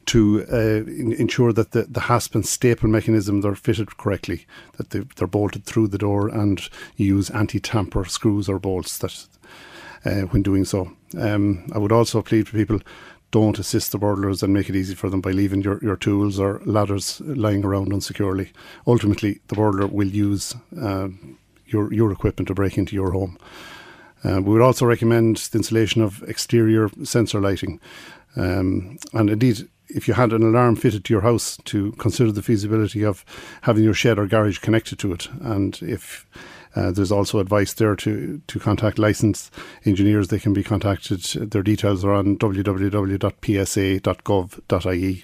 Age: 50-69